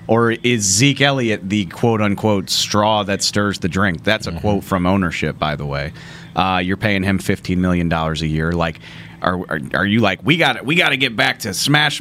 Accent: American